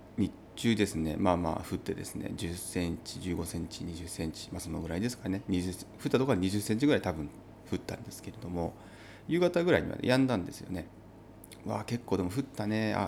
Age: 30-49